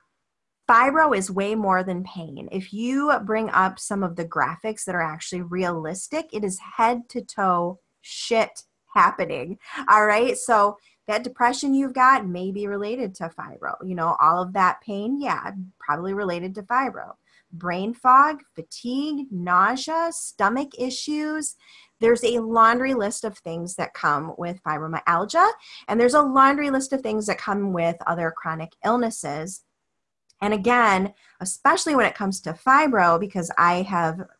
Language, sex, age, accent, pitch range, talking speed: English, female, 30-49, American, 180-260 Hz, 150 wpm